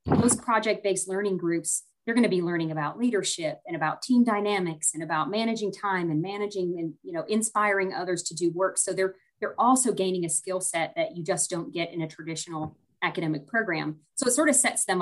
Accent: American